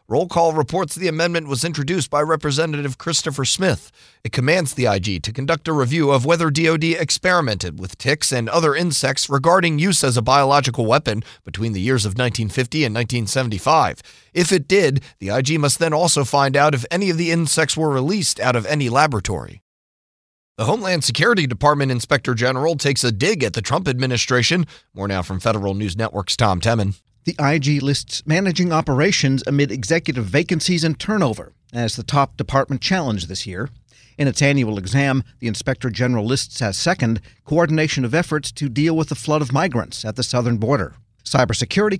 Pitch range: 120-160 Hz